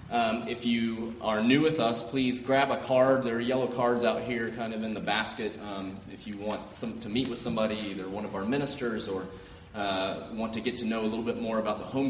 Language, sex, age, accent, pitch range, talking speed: English, male, 30-49, American, 100-130 Hz, 250 wpm